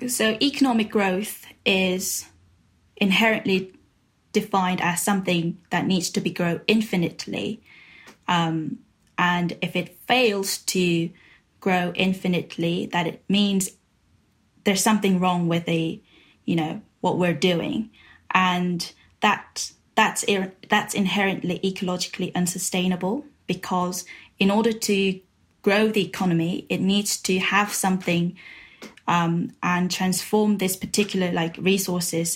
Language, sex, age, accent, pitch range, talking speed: English, female, 10-29, British, 175-200 Hz, 115 wpm